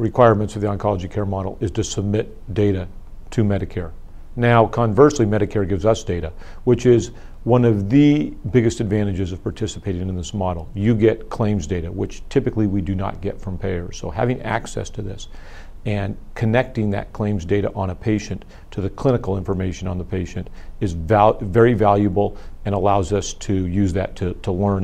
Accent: American